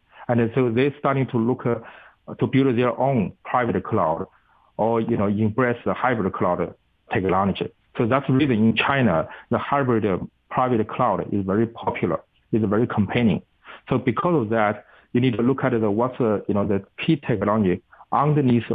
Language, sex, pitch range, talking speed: English, male, 105-125 Hz, 170 wpm